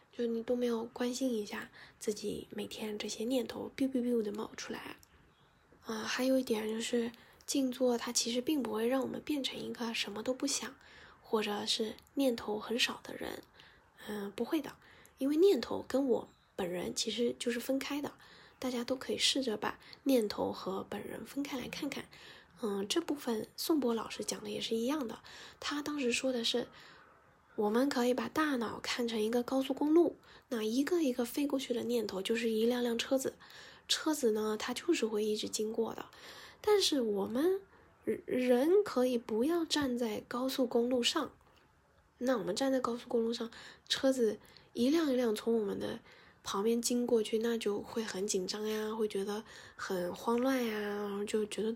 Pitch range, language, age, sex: 220-260 Hz, Chinese, 10-29, female